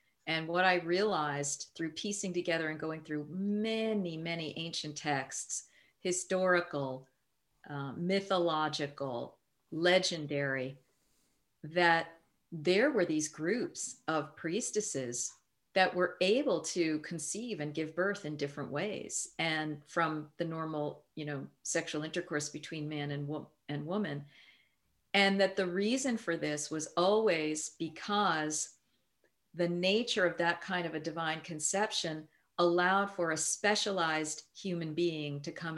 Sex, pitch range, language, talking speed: female, 150-180 Hz, English, 125 wpm